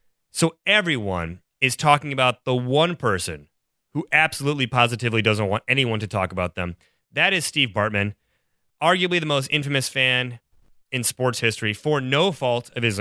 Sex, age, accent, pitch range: male, 30-49, American, 110-145 Hz